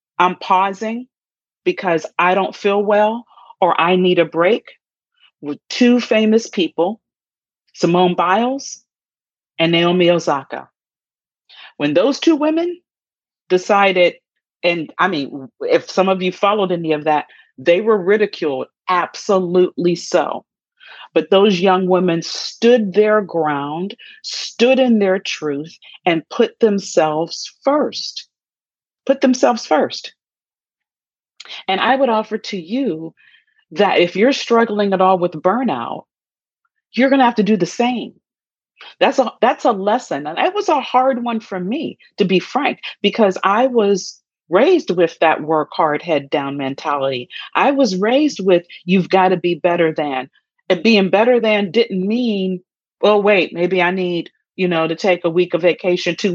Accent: American